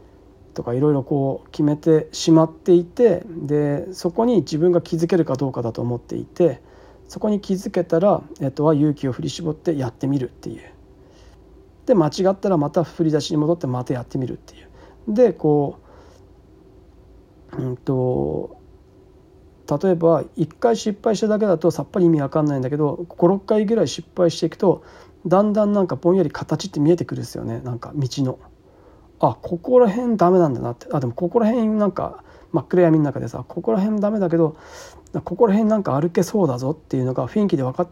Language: Japanese